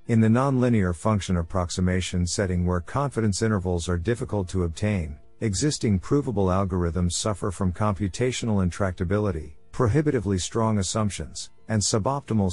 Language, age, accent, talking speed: English, 50-69, American, 120 wpm